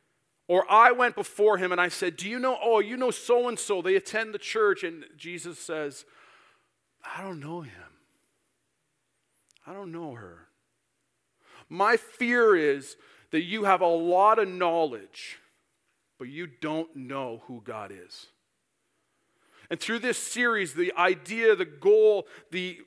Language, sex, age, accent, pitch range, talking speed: English, male, 40-59, American, 170-220 Hz, 145 wpm